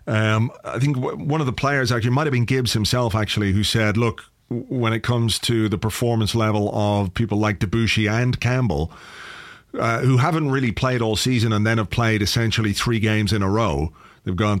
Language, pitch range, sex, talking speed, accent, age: English, 105-130 Hz, male, 200 wpm, British, 40-59